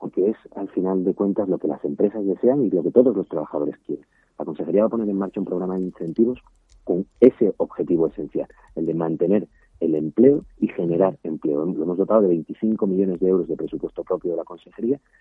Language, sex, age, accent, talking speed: Spanish, male, 40-59, Spanish, 215 wpm